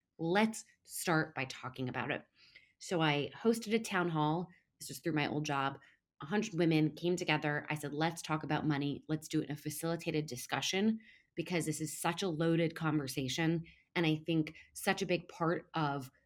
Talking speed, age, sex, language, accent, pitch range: 190 wpm, 20-39, female, English, American, 155-200 Hz